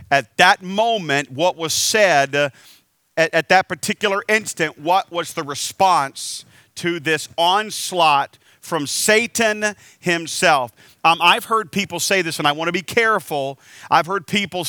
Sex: male